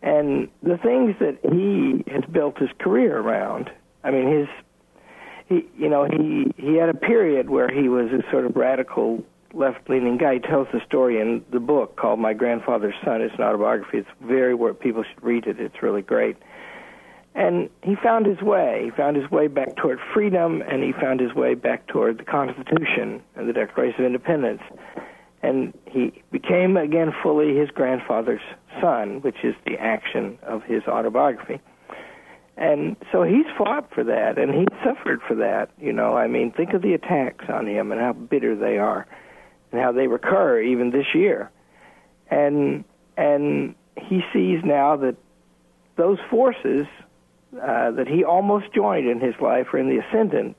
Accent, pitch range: American, 125-180 Hz